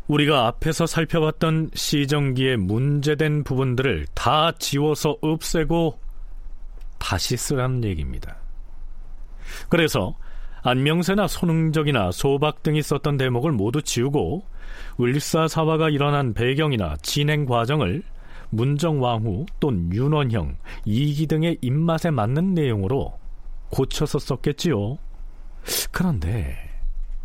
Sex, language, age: male, Korean, 40-59